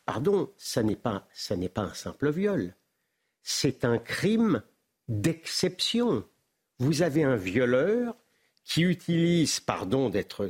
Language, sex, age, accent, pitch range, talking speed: French, male, 50-69, French, 130-200 Hz, 115 wpm